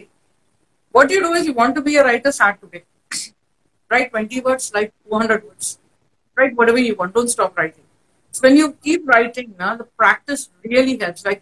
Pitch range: 215-290 Hz